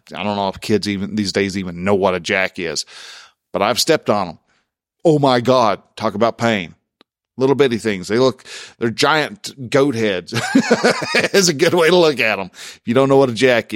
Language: English